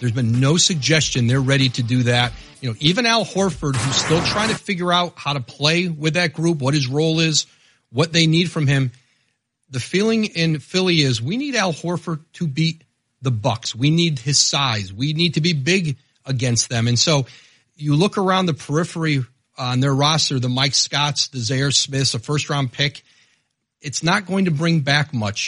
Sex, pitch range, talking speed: male, 125-160 Hz, 200 wpm